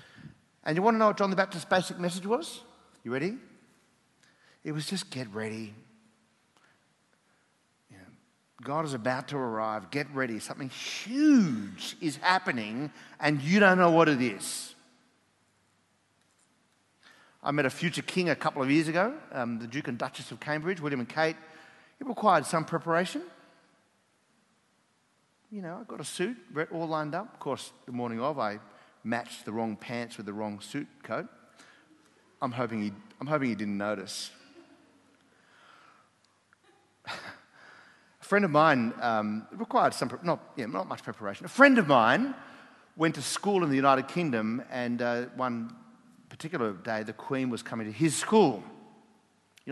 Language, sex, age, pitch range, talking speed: English, male, 50-69, 120-180 Hz, 160 wpm